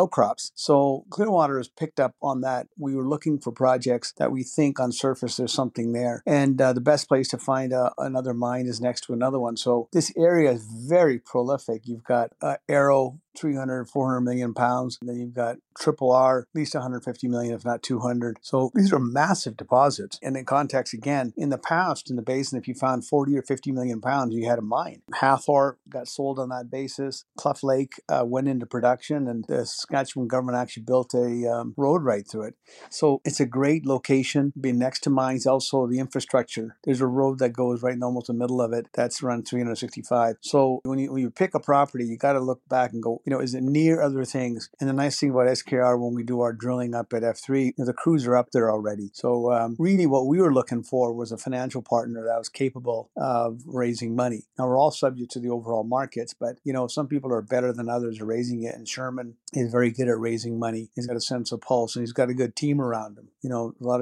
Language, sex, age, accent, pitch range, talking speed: English, male, 50-69, American, 120-135 Hz, 235 wpm